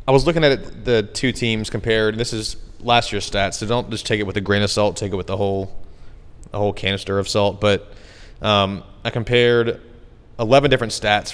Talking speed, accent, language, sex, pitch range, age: 215 wpm, American, English, male, 95-110 Hz, 20-39